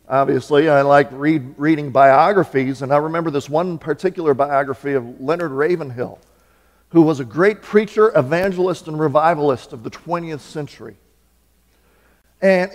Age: 50-69